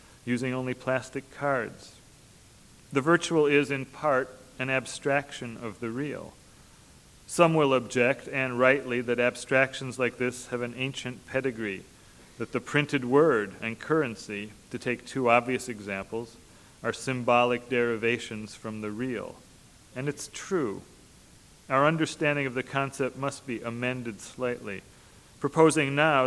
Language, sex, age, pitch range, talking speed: English, male, 40-59, 115-135 Hz, 135 wpm